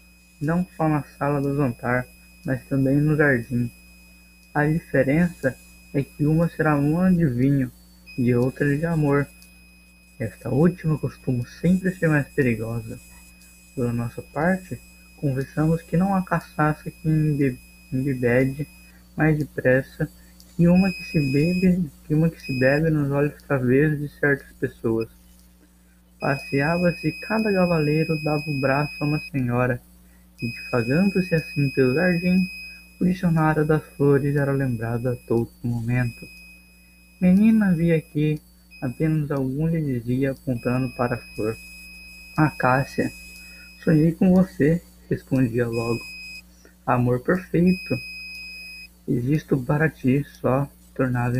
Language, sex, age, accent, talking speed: Portuguese, male, 20-39, Brazilian, 125 wpm